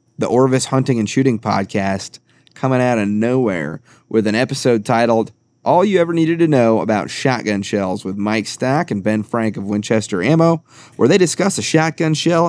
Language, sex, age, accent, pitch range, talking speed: English, male, 30-49, American, 105-130 Hz, 185 wpm